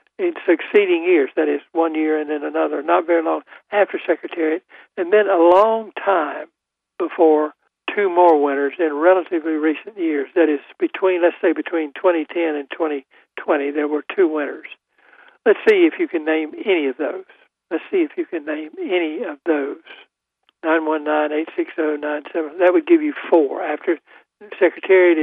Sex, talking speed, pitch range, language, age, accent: male, 175 wpm, 155-205 Hz, English, 60-79, American